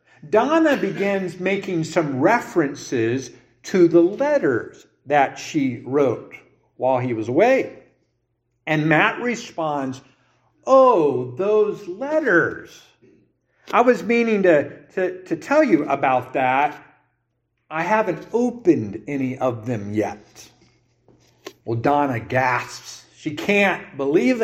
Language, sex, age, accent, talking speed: English, male, 50-69, American, 105 wpm